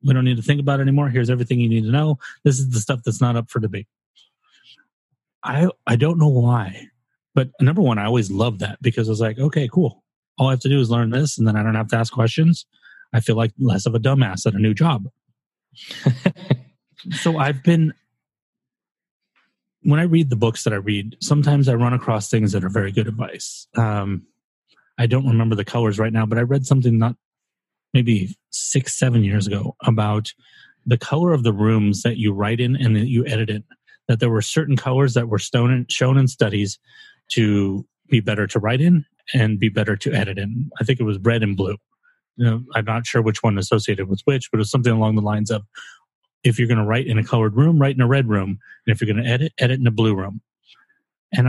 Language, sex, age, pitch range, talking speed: English, male, 30-49, 110-140 Hz, 230 wpm